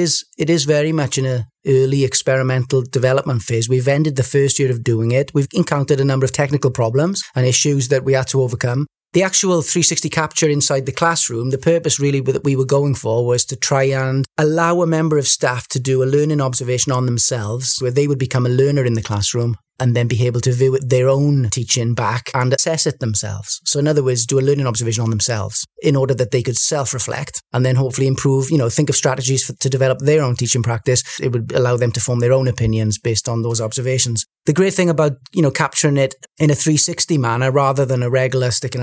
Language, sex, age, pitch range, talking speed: English, male, 30-49, 120-140 Hz, 225 wpm